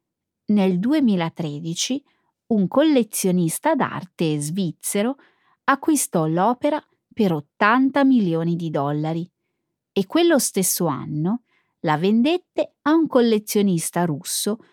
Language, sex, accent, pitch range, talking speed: Italian, female, native, 170-265 Hz, 95 wpm